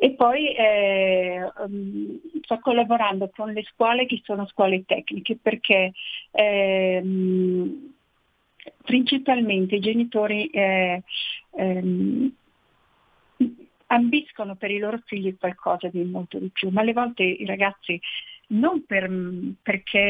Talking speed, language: 110 wpm, Italian